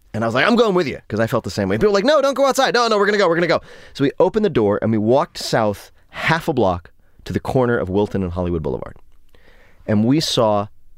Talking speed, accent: 295 wpm, American